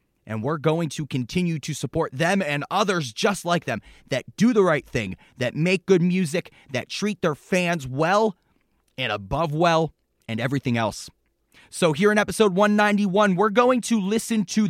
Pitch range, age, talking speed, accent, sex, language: 140-195 Hz, 30-49, 175 wpm, American, male, English